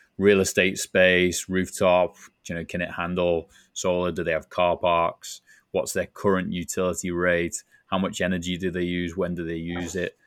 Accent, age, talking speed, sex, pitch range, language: British, 20-39, 180 wpm, male, 85-100 Hz, English